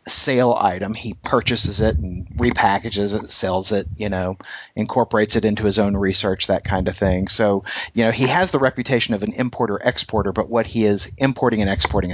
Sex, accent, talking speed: male, American, 195 wpm